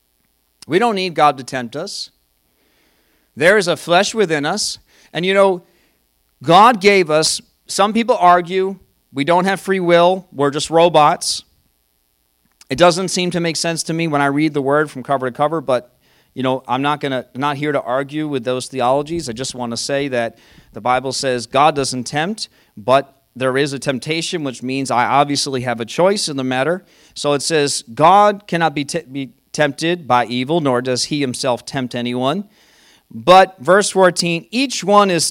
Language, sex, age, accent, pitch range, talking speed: English, male, 40-59, American, 130-185 Hz, 190 wpm